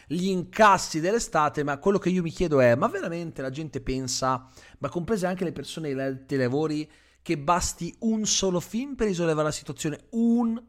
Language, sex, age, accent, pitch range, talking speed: Italian, male, 30-49, native, 140-205 Hz, 180 wpm